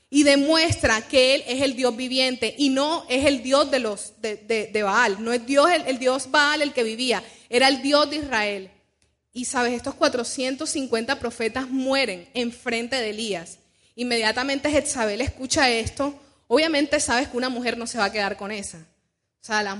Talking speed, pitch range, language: 190 wpm, 225-285 Hz, Spanish